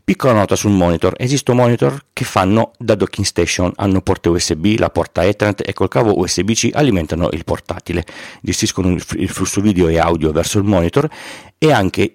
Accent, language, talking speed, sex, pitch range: native, Italian, 180 wpm, male, 85-105 Hz